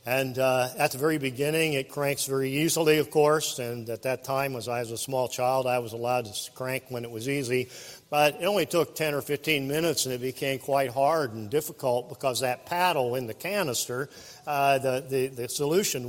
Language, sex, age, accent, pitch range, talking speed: English, male, 50-69, American, 130-165 Hz, 215 wpm